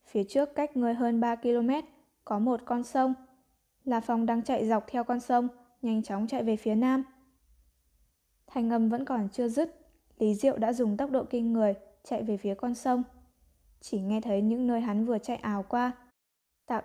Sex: female